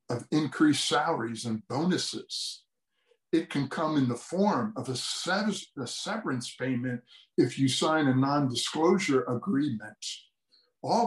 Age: 60-79